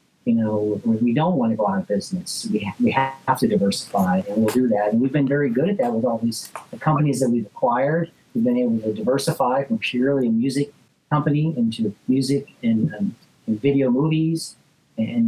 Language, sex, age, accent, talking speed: English, male, 40-59, American, 210 wpm